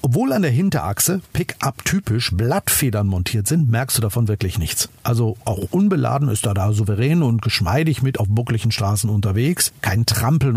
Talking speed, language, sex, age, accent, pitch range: 170 wpm, German, male, 50-69, German, 110-150 Hz